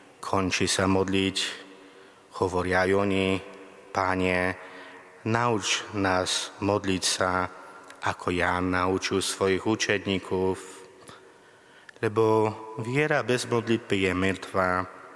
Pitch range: 90-100 Hz